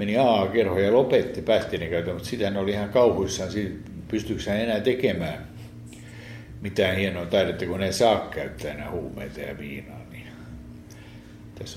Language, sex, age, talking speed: Finnish, male, 60-79, 150 wpm